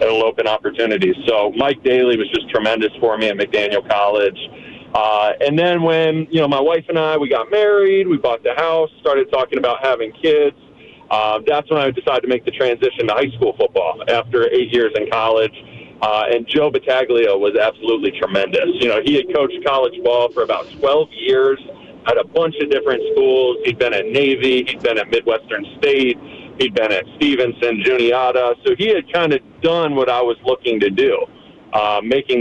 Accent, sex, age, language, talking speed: American, male, 40-59, English, 195 wpm